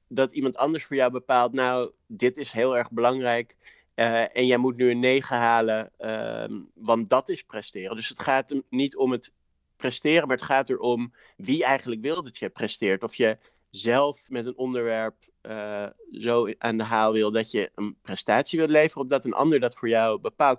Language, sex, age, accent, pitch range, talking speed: Dutch, male, 20-39, Dutch, 115-130 Hz, 200 wpm